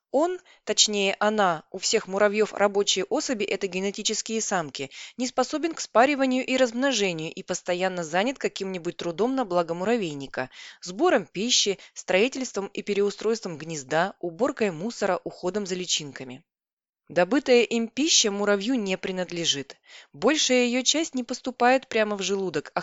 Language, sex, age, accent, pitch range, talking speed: Russian, female, 20-39, native, 175-245 Hz, 135 wpm